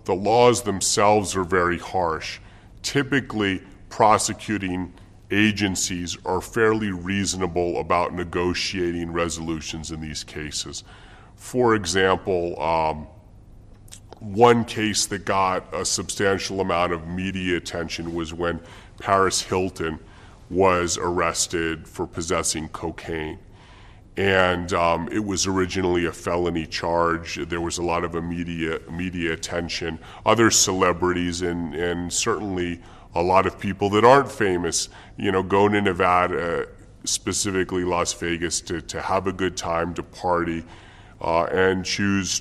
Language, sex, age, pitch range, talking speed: English, female, 40-59, 85-100 Hz, 125 wpm